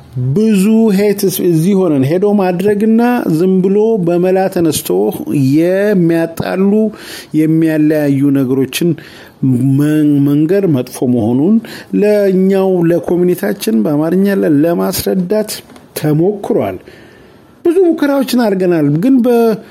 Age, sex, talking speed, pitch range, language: 50-69, male, 40 wpm, 140-205 Hz, English